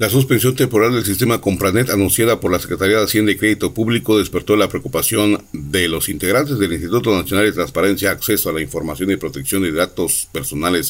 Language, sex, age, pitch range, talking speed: Spanish, male, 50-69, 90-115 Hz, 195 wpm